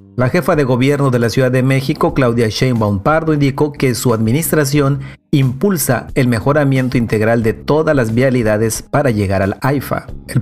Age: 40-59